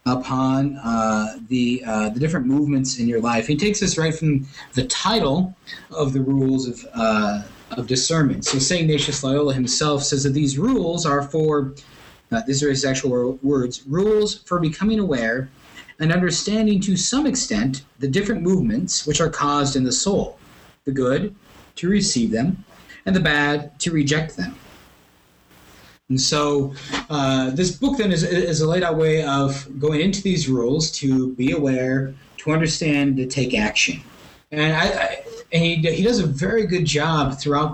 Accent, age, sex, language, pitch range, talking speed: American, 30-49, male, English, 130-160 Hz, 170 wpm